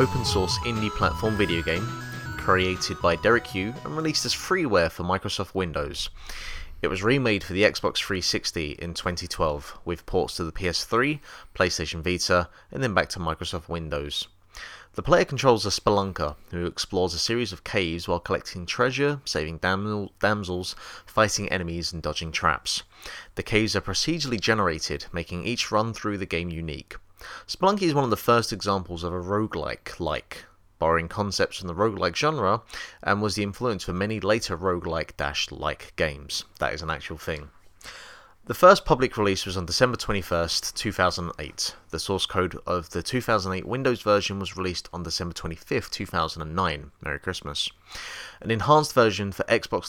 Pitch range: 85-105 Hz